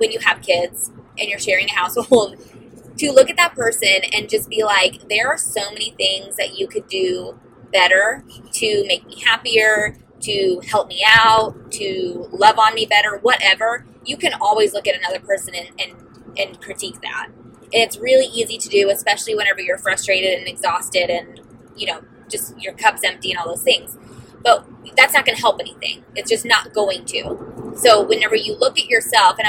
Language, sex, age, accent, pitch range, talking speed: English, female, 20-39, American, 205-335 Hz, 195 wpm